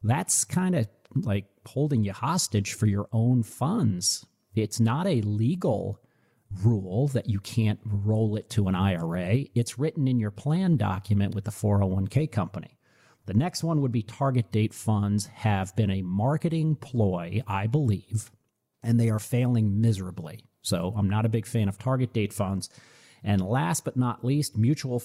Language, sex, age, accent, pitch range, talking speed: English, male, 40-59, American, 100-125 Hz, 165 wpm